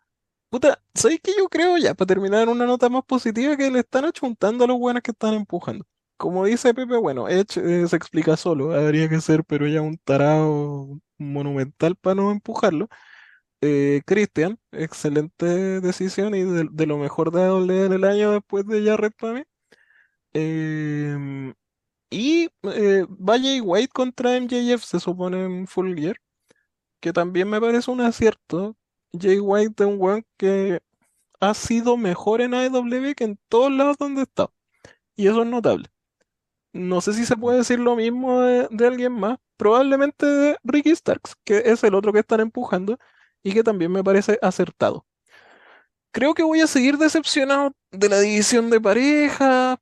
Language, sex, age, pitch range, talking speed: Spanish, male, 20-39, 180-250 Hz, 170 wpm